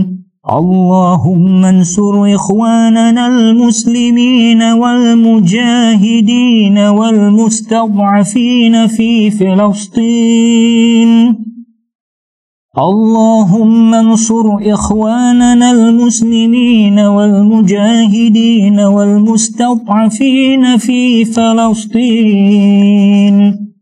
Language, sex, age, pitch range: Malay, male, 30-49, 205-235 Hz